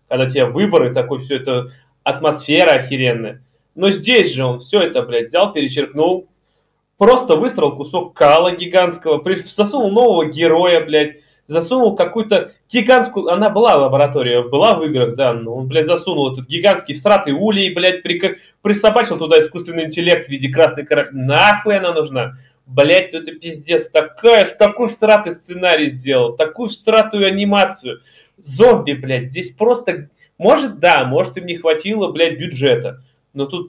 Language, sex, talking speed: Russian, male, 145 wpm